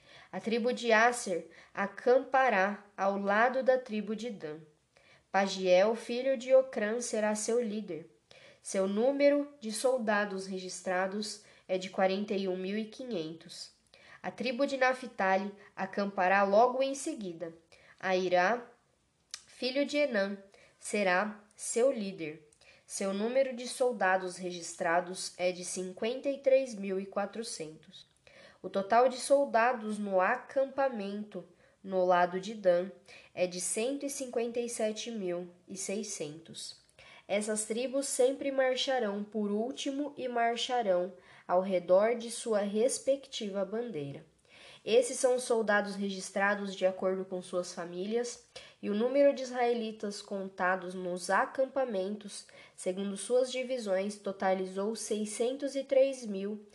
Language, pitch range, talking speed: Portuguese, 185-250 Hz, 105 wpm